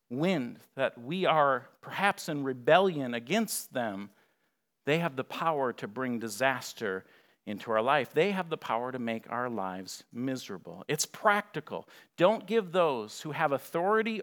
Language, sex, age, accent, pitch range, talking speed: English, male, 50-69, American, 125-185 Hz, 150 wpm